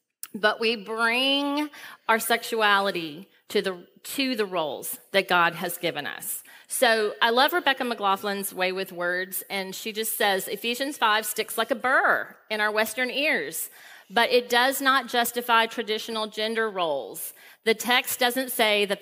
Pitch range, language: 195-250 Hz, English